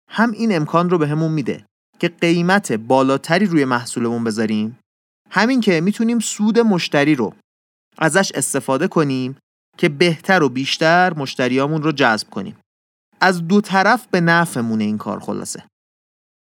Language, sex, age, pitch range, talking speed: Persian, male, 30-49, 120-185 Hz, 140 wpm